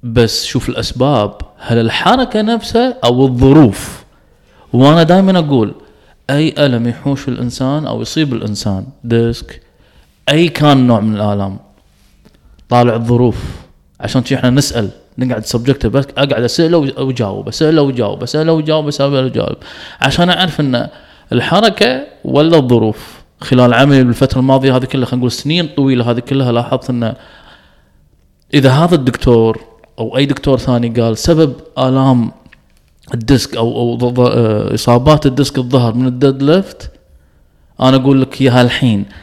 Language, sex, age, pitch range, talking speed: Arabic, male, 20-39, 115-145 Hz, 130 wpm